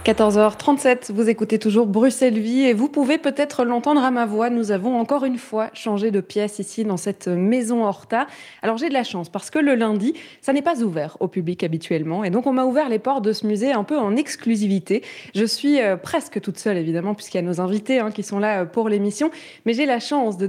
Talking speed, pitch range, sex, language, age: 225 wpm, 200-260 Hz, female, French, 20-39